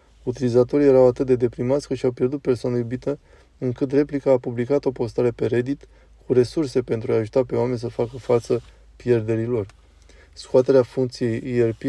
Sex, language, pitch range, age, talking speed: male, Romanian, 115-130 Hz, 20-39, 160 wpm